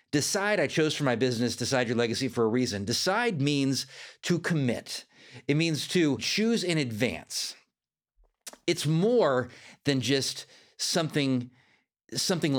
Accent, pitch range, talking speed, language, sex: American, 130-215 Hz, 135 wpm, English, male